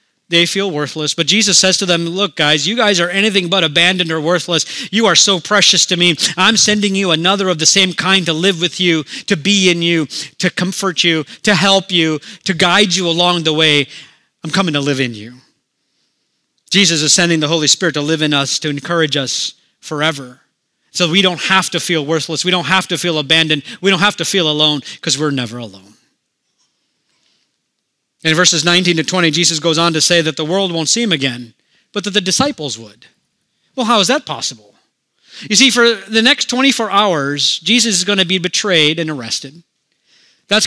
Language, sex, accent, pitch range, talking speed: English, male, American, 160-210 Hz, 205 wpm